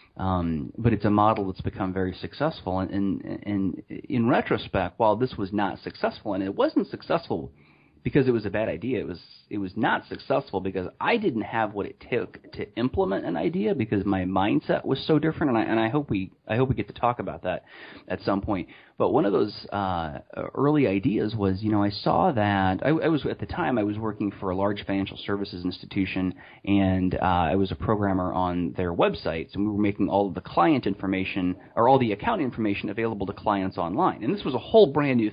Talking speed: 225 wpm